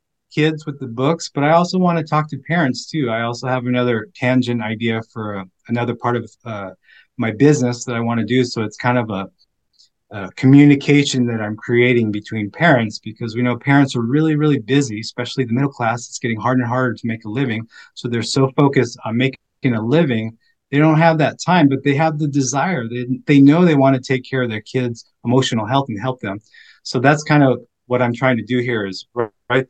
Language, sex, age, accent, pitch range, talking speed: English, male, 30-49, American, 115-140 Hz, 225 wpm